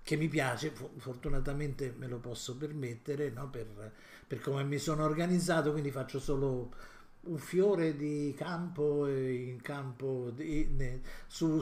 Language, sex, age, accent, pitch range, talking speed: Italian, male, 50-69, native, 125-155 Hz, 130 wpm